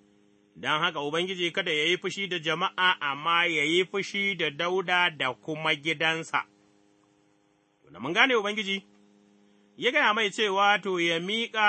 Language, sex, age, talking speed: English, male, 30-49, 140 wpm